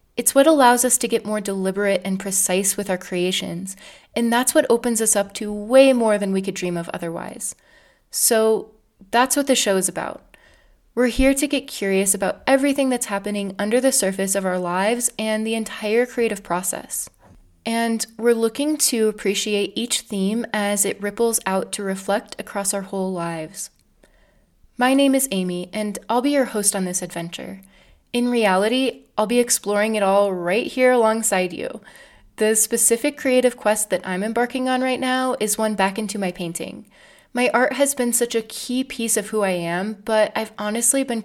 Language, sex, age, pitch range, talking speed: English, female, 20-39, 195-240 Hz, 185 wpm